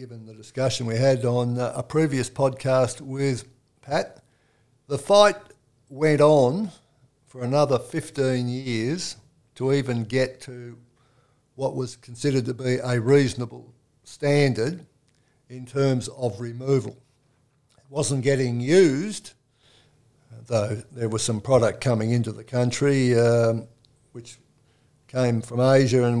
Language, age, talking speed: English, 60-79, 125 wpm